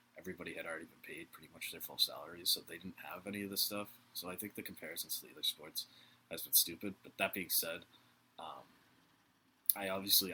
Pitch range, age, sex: 110-120 Hz, 20-39, male